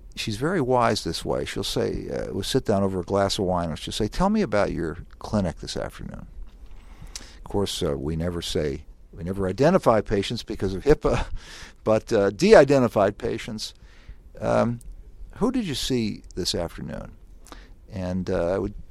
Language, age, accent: English, 50-69, American